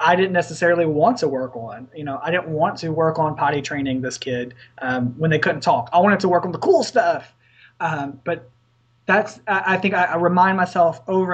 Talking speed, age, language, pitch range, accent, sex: 215 wpm, 20-39, English, 150-190 Hz, American, male